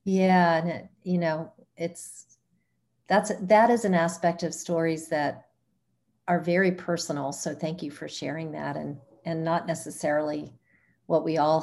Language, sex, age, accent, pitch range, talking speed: English, female, 50-69, American, 140-170 Hz, 150 wpm